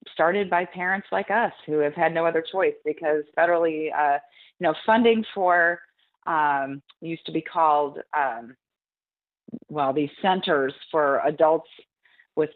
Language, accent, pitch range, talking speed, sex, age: English, American, 150-190 Hz, 145 wpm, female, 30-49